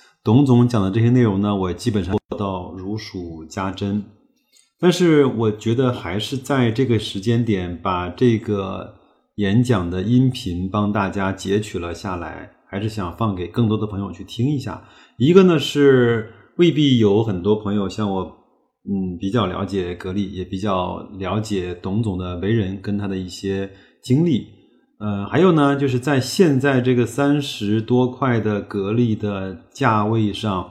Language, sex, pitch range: Chinese, male, 95-120 Hz